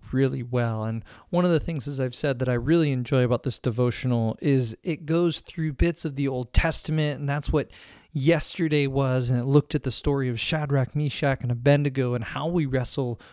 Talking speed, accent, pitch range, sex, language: 205 wpm, American, 135-160 Hz, male, English